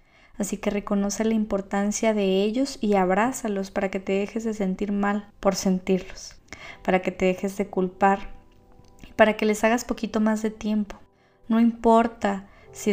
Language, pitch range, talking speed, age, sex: Spanish, 190-215 Hz, 165 wpm, 20-39, female